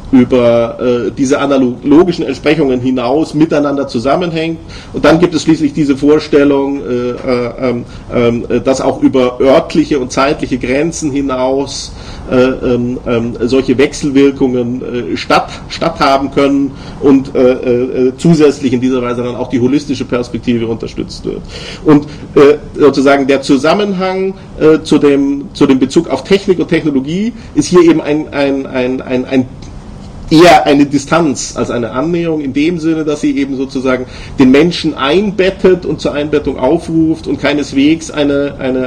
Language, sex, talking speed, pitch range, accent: German, male, 150 wpm, 130-160 Hz, German